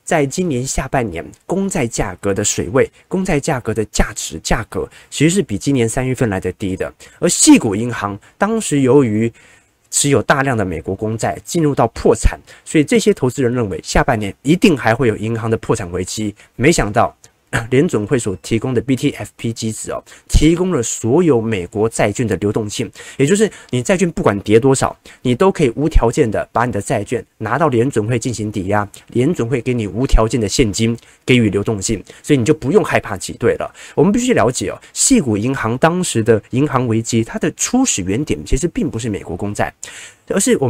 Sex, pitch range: male, 110-160 Hz